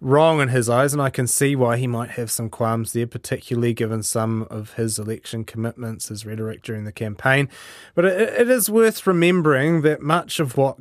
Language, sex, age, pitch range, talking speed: English, male, 30-49, 115-140 Hz, 205 wpm